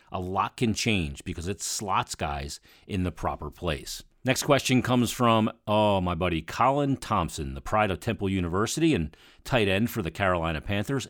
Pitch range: 85-115 Hz